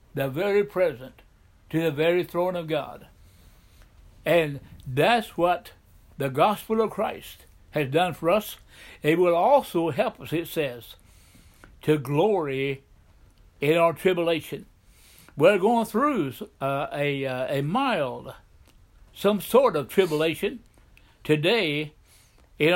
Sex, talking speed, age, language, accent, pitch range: male, 120 wpm, 60-79, English, American, 130-195 Hz